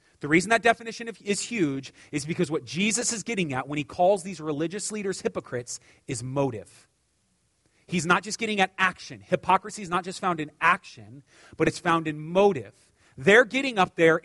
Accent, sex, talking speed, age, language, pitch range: American, male, 185 wpm, 30-49, English, 170-250 Hz